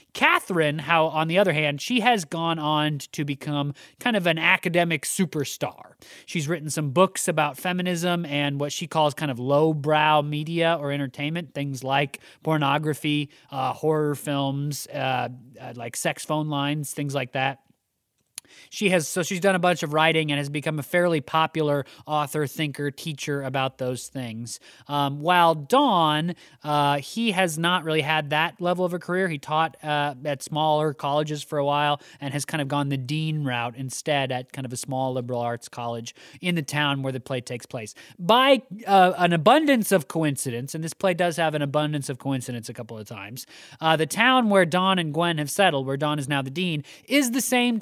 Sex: male